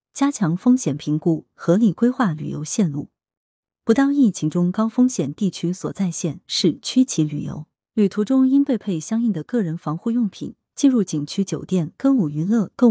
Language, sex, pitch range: Chinese, female, 160-225 Hz